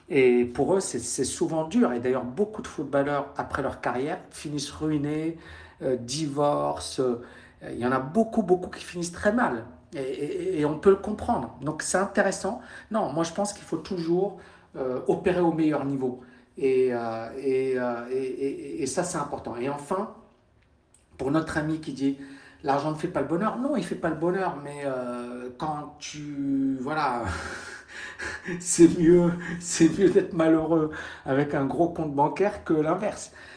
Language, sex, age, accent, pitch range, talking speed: French, male, 50-69, French, 130-165 Hz, 185 wpm